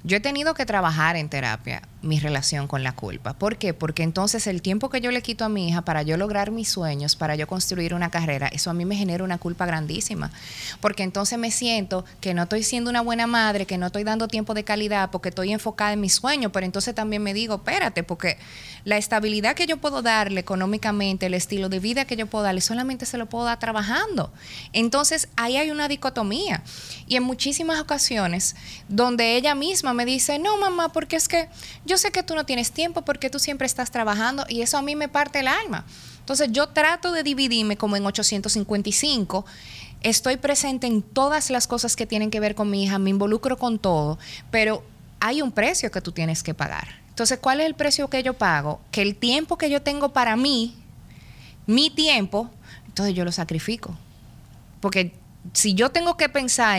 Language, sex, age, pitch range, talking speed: Spanish, female, 30-49, 185-260 Hz, 205 wpm